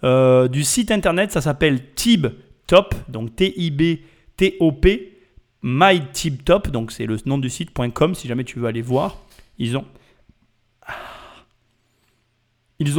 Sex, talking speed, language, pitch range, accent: male, 120 wpm, French, 125-155 Hz, French